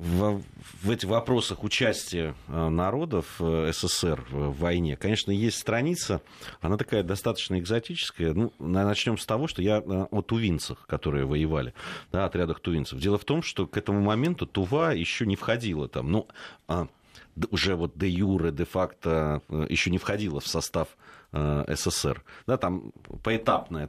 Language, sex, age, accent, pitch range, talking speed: Russian, male, 30-49, native, 80-105 Hz, 135 wpm